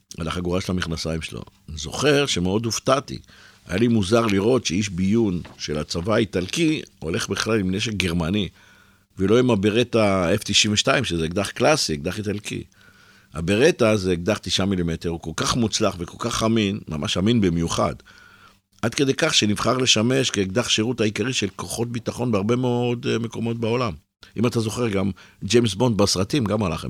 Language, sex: Hebrew, male